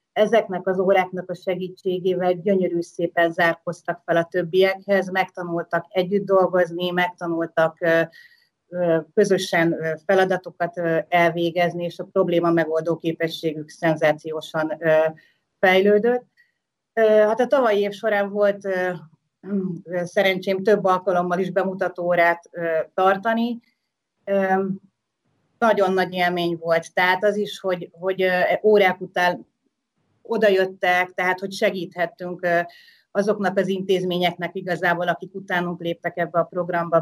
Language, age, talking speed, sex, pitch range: Hungarian, 30-49, 105 wpm, female, 170-195 Hz